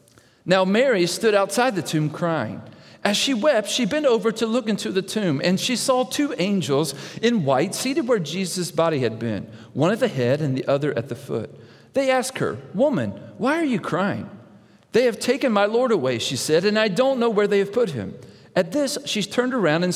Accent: American